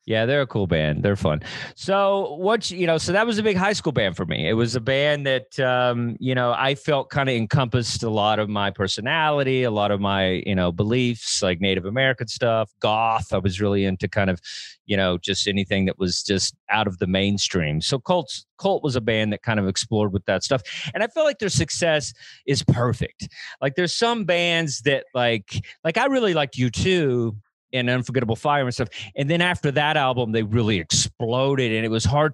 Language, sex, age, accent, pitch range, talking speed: English, male, 30-49, American, 110-150 Hz, 220 wpm